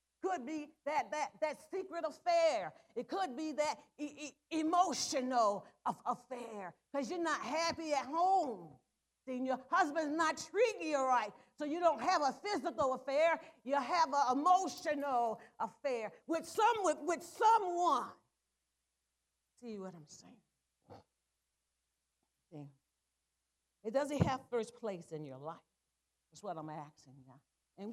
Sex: female